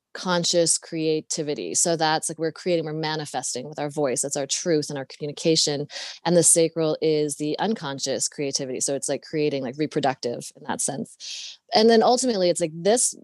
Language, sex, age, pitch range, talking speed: English, female, 20-39, 145-175 Hz, 180 wpm